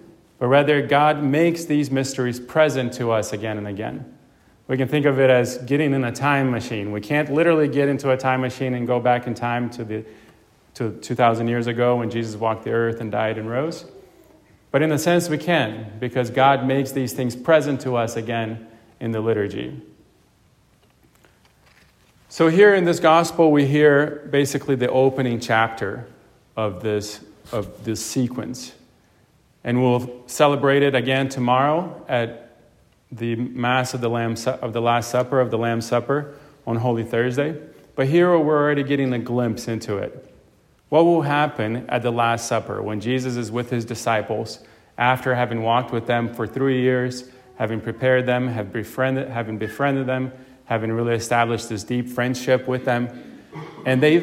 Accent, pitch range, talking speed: American, 115-140 Hz, 175 wpm